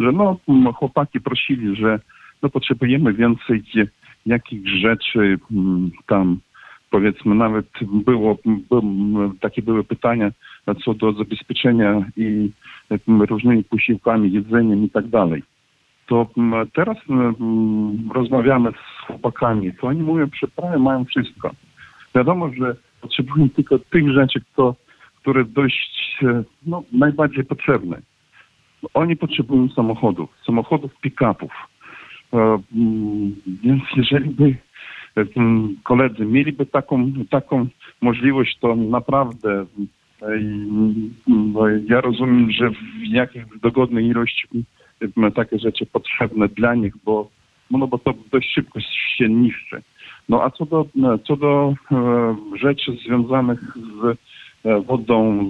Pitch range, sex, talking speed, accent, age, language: 110-130 Hz, male, 110 wpm, native, 50-69, Polish